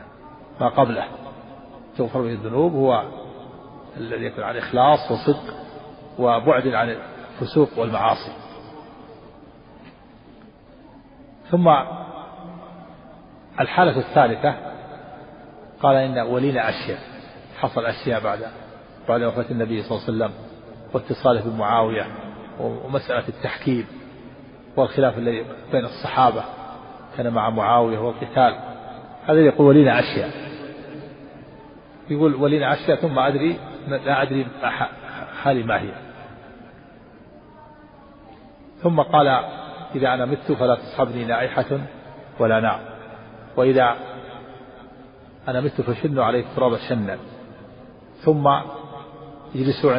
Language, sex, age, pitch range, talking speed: Arabic, male, 40-59, 120-145 Hz, 90 wpm